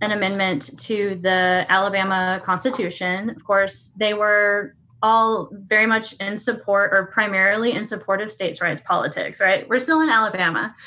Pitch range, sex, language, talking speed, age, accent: 185-230 Hz, female, English, 155 wpm, 10-29, American